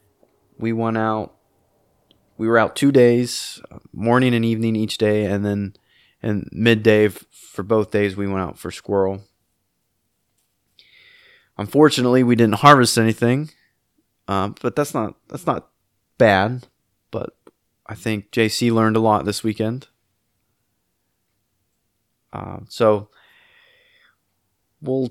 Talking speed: 115 wpm